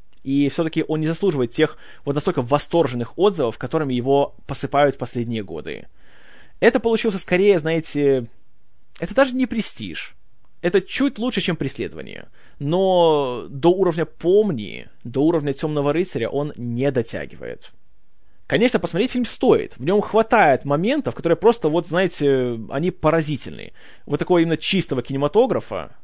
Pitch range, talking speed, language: 140-190 Hz, 135 wpm, Russian